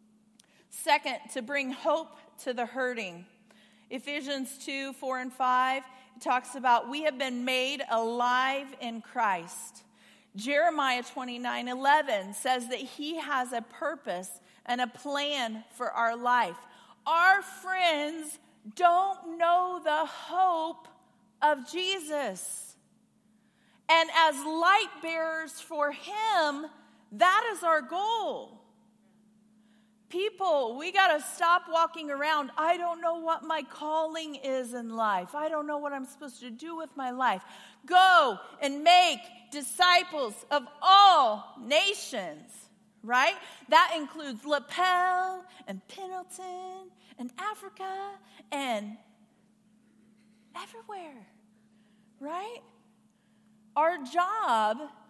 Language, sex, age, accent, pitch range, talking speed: English, female, 40-59, American, 230-330 Hz, 110 wpm